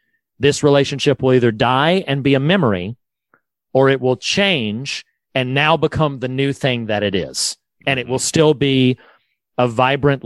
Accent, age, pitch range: American, 40-59, 115-145 Hz